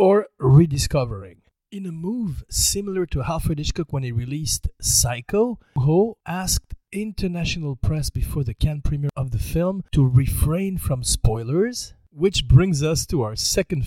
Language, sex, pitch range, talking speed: French, male, 125-175 Hz, 145 wpm